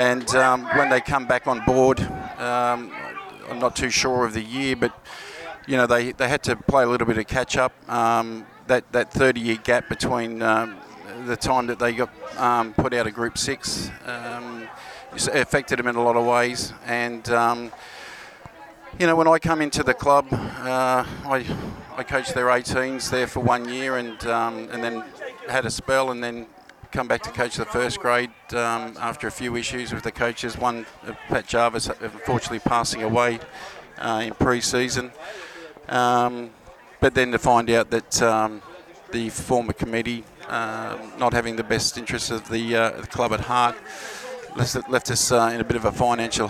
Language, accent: English, Australian